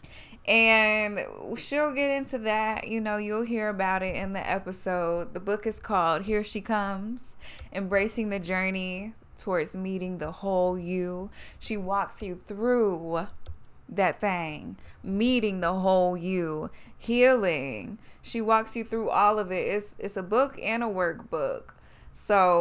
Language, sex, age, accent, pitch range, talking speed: English, female, 20-39, American, 175-215 Hz, 145 wpm